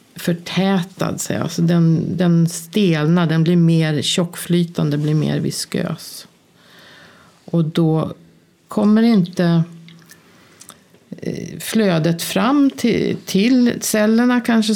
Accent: native